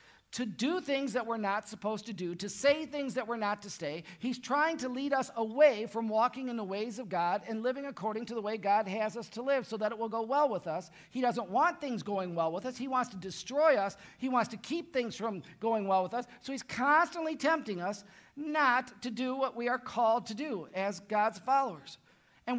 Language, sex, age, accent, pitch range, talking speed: English, male, 50-69, American, 210-270 Hz, 240 wpm